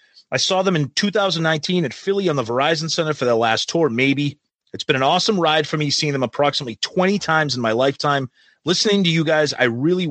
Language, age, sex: English, 30-49, male